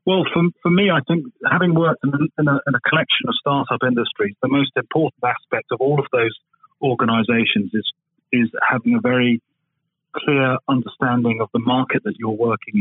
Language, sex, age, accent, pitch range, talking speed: English, male, 40-59, British, 125-165 Hz, 185 wpm